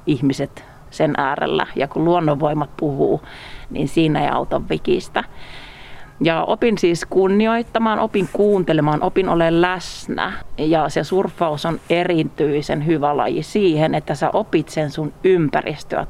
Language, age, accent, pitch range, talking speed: Finnish, 40-59, native, 150-185 Hz, 130 wpm